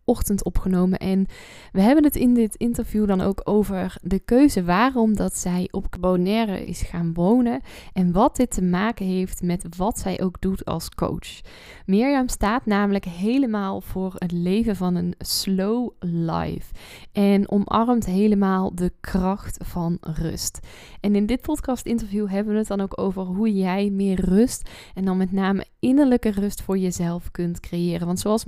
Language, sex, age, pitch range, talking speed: Dutch, female, 10-29, 185-220 Hz, 170 wpm